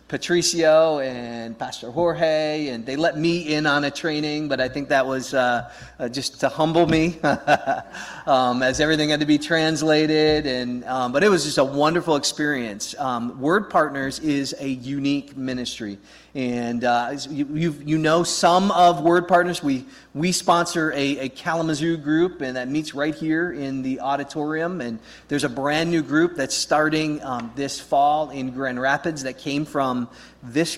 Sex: male